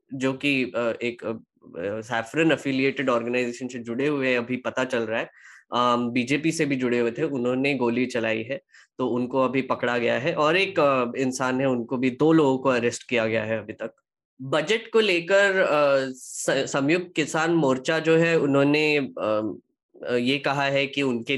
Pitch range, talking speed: 125-150 Hz, 165 wpm